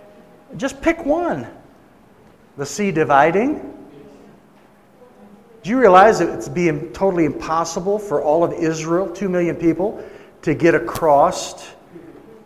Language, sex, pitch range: English, male, 145-180 Hz